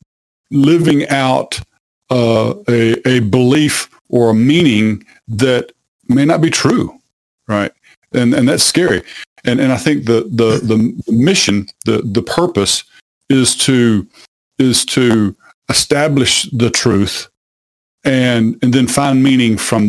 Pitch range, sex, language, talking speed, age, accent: 115-135 Hz, male, English, 130 wpm, 50-69, American